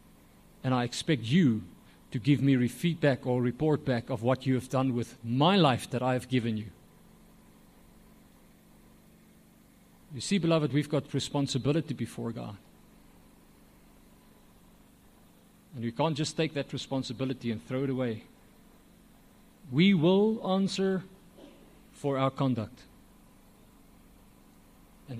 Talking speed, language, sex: 120 wpm, English, male